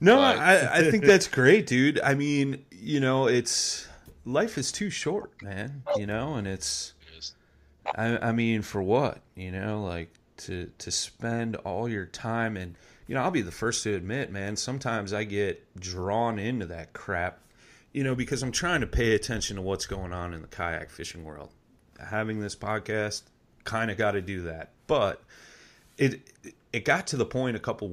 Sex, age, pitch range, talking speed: male, 30-49, 90-115 Hz, 185 wpm